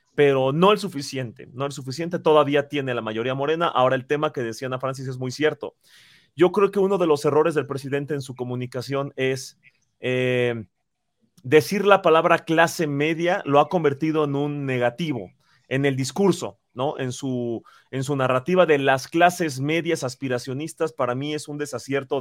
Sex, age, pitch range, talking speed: male, 30-49, 130-170 Hz, 180 wpm